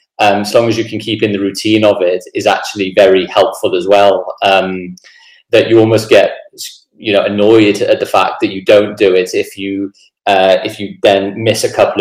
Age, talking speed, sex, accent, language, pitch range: 20-39, 220 wpm, male, British, English, 100-125 Hz